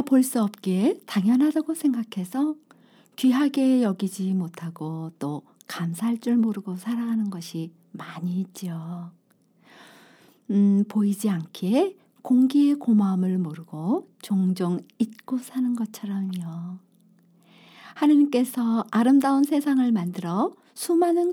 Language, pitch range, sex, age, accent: Korean, 180-265 Hz, female, 50-69, native